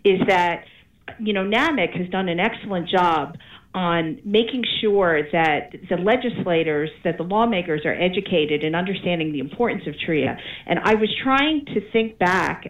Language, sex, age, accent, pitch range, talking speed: English, female, 50-69, American, 170-210 Hz, 160 wpm